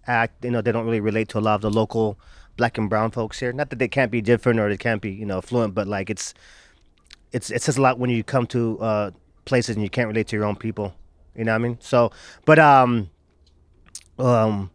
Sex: male